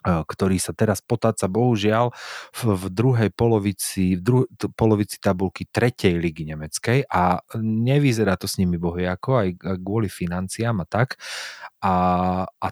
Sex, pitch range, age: male, 90-120 Hz, 30-49